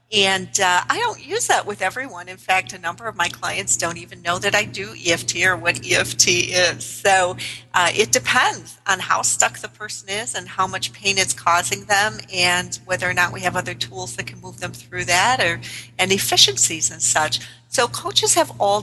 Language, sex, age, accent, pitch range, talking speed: English, female, 40-59, American, 120-195 Hz, 210 wpm